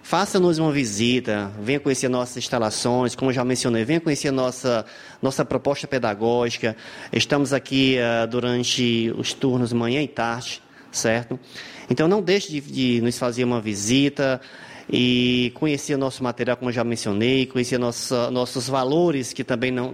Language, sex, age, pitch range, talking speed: Portuguese, male, 20-39, 115-140 Hz, 155 wpm